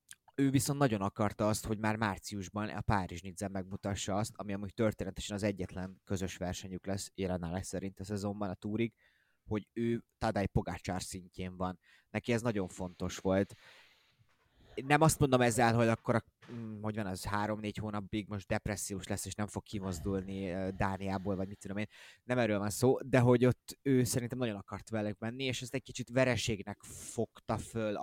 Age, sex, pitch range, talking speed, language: 20-39, male, 95-115 Hz, 170 wpm, Hungarian